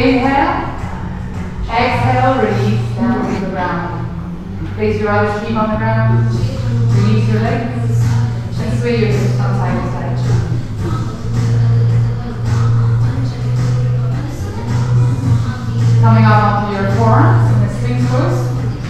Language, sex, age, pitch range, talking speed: English, female, 30-49, 115-125 Hz, 60 wpm